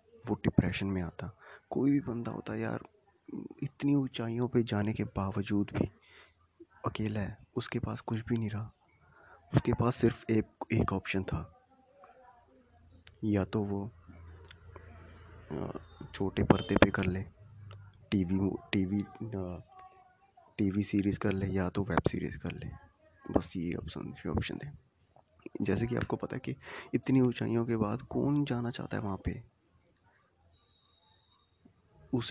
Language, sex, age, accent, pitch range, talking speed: Hindi, male, 20-39, native, 95-115 Hz, 135 wpm